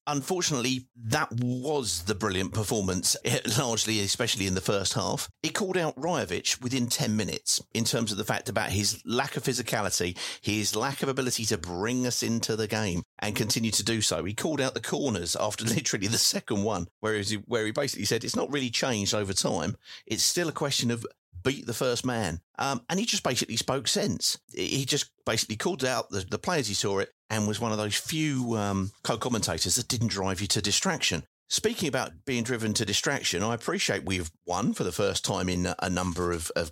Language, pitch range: English, 95-125 Hz